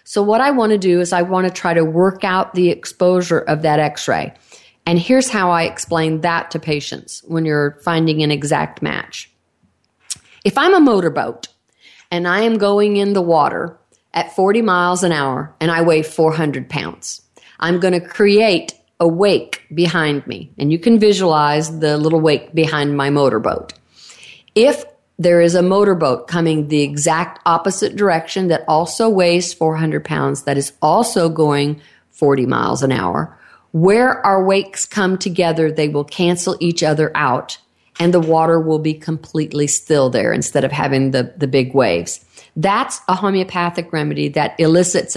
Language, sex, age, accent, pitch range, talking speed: English, female, 40-59, American, 155-185 Hz, 170 wpm